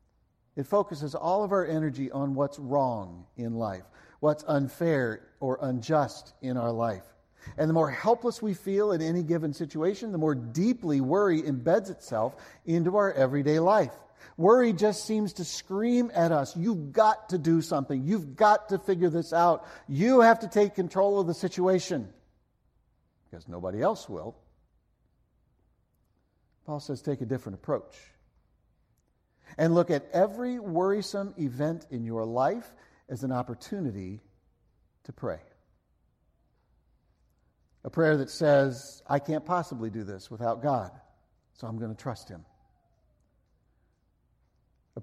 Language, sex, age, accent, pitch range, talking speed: English, male, 50-69, American, 115-170 Hz, 140 wpm